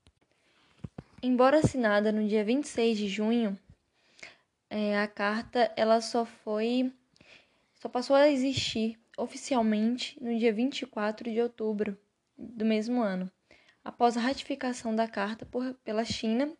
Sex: female